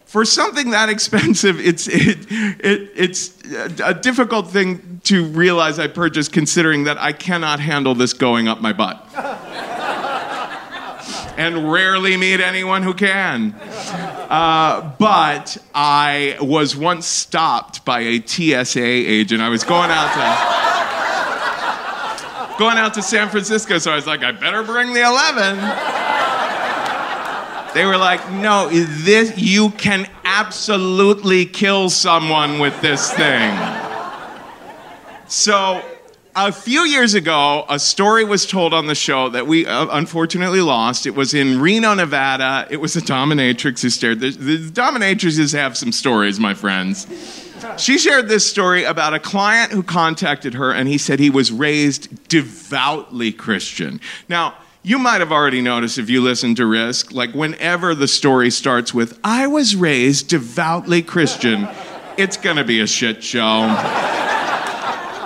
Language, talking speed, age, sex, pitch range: English, 145 wpm, 40-59, male, 140-195 Hz